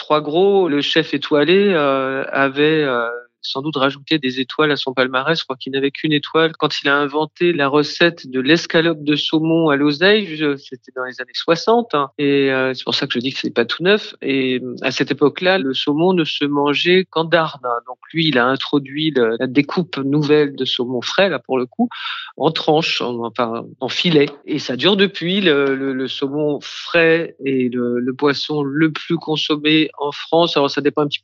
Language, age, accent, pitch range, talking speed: French, 40-59, French, 135-165 Hz, 215 wpm